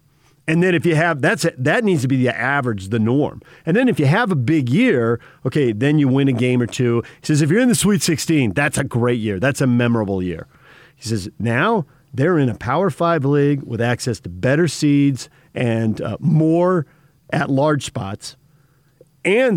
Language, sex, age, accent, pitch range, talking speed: English, male, 50-69, American, 125-160 Hz, 210 wpm